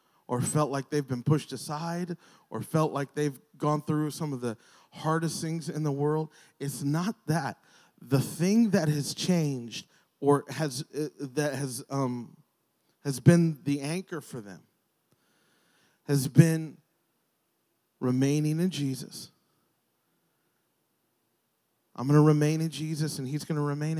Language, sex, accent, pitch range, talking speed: English, male, American, 150-185 Hz, 135 wpm